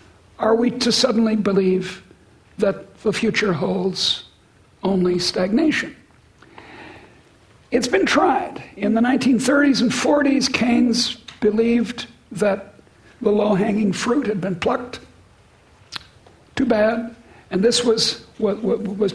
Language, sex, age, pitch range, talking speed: English, male, 60-79, 200-245 Hz, 110 wpm